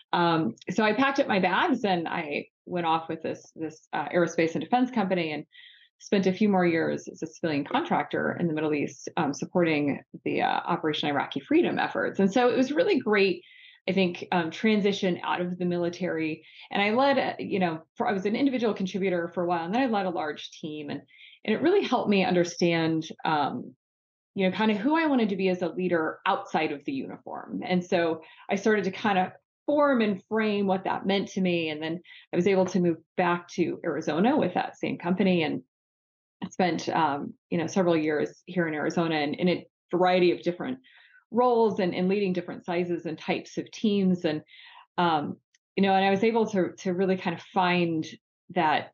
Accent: American